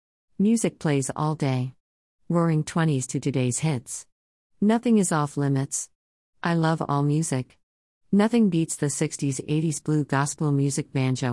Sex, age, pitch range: female, 50-69, 130-160 Hz